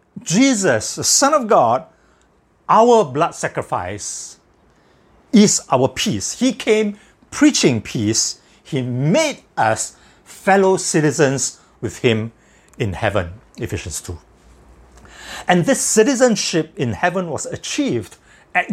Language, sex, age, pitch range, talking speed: English, male, 60-79, 130-205 Hz, 110 wpm